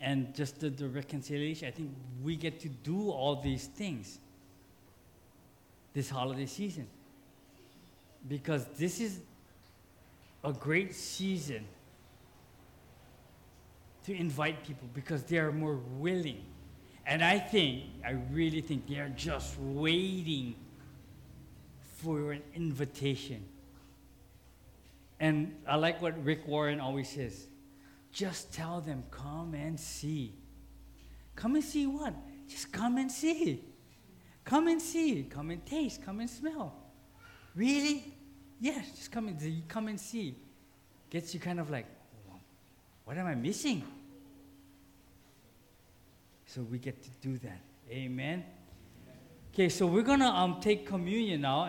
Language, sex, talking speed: English, male, 125 wpm